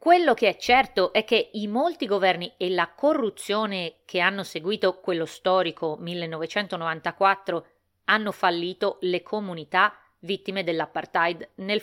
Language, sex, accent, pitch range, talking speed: Italian, female, native, 165-210 Hz, 125 wpm